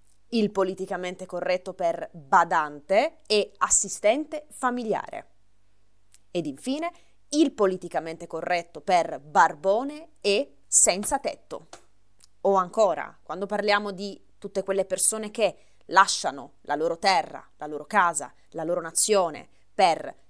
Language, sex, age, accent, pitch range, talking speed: Italian, female, 20-39, native, 175-255 Hz, 110 wpm